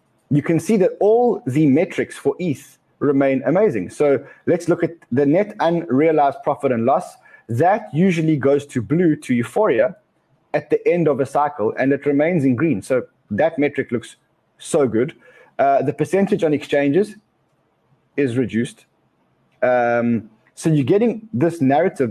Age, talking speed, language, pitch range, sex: 30-49, 155 wpm, English, 135-170 Hz, male